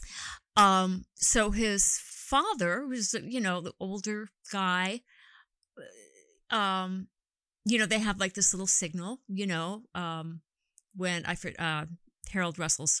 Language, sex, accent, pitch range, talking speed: English, female, American, 175-220 Hz, 125 wpm